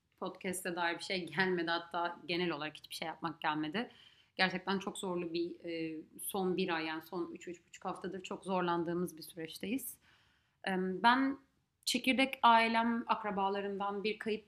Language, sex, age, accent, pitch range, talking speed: Turkish, female, 30-49, native, 180-215 Hz, 135 wpm